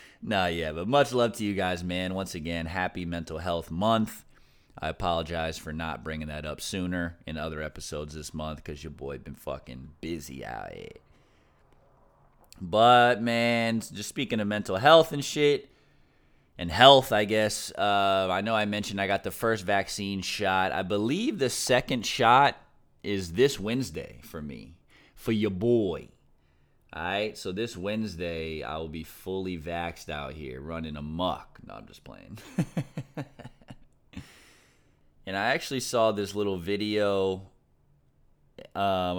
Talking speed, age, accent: 155 wpm, 30-49, American